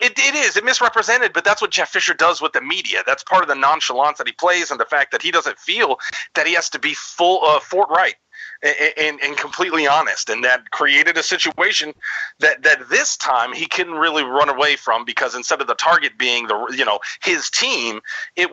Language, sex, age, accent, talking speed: English, male, 40-59, American, 230 wpm